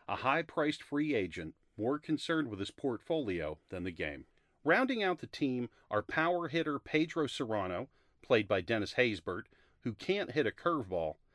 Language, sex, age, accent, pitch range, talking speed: English, male, 40-59, American, 110-175 Hz, 160 wpm